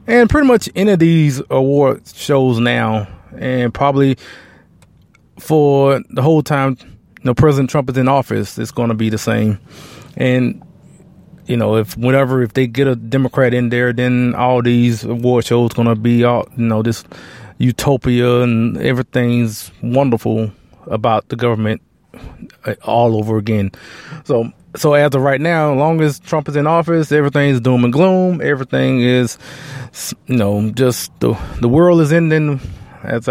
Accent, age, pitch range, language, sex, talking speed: American, 20-39, 115-140 Hz, English, male, 160 wpm